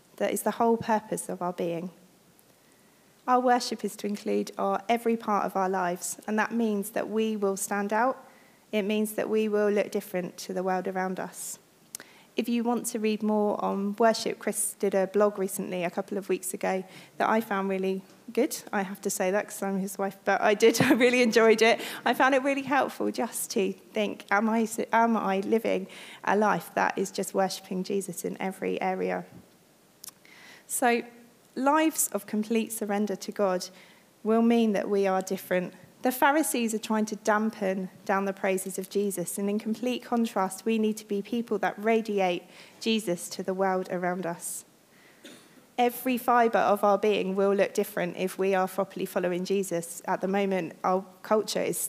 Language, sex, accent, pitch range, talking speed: English, female, British, 190-220 Hz, 185 wpm